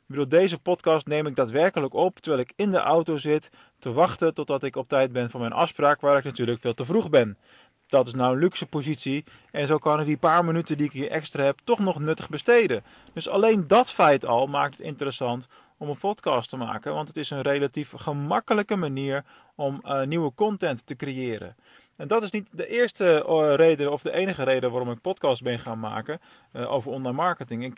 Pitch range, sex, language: 125-165 Hz, male, Dutch